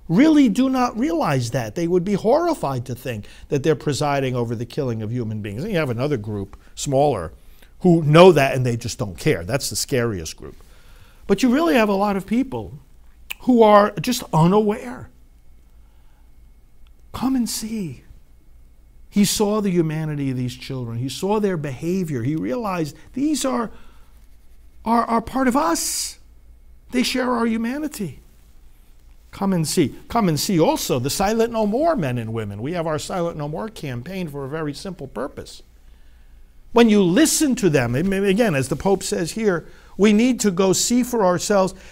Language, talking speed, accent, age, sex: English, 175 wpm, American, 50-69, male